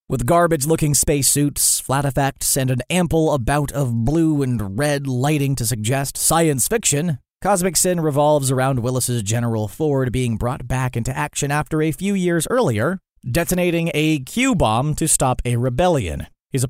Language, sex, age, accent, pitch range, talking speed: English, male, 30-49, American, 120-155 Hz, 160 wpm